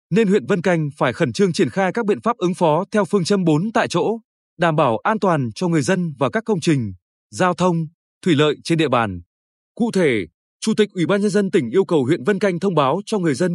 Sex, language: male, Vietnamese